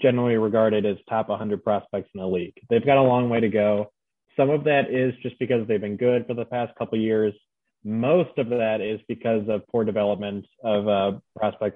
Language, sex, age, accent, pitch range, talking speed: English, male, 20-39, American, 105-120 Hz, 215 wpm